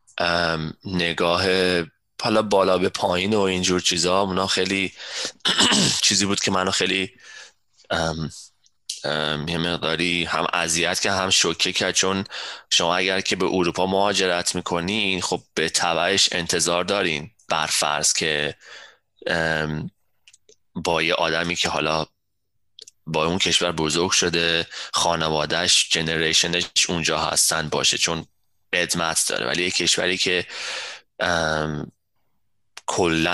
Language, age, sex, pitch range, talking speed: Persian, 20-39, male, 80-95 Hz, 110 wpm